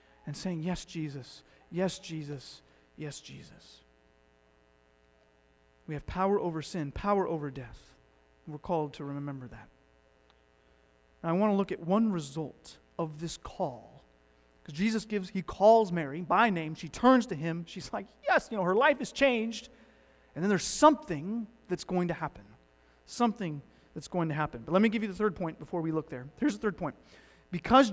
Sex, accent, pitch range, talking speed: male, American, 145-245 Hz, 180 wpm